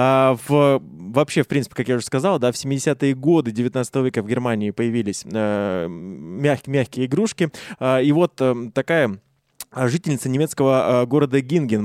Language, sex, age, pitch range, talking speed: Russian, male, 20-39, 120-150 Hz, 155 wpm